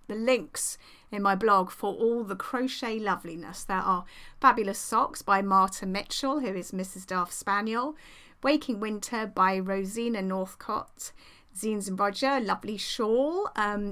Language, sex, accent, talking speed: English, female, British, 140 wpm